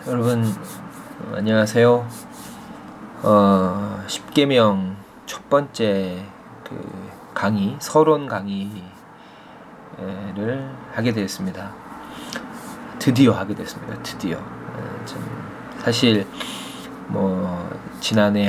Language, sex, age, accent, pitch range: Korean, male, 20-39, native, 95-125 Hz